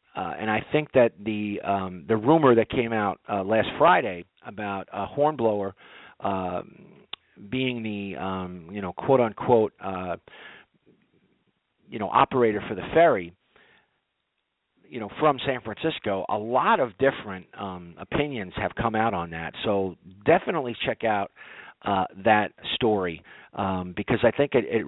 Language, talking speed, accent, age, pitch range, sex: English, 150 wpm, American, 40-59, 100-135 Hz, male